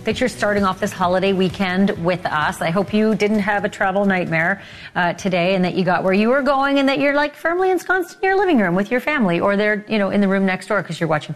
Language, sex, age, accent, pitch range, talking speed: English, female, 30-49, American, 180-230 Hz, 275 wpm